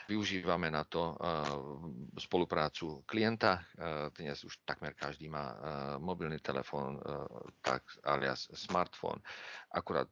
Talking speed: 120 wpm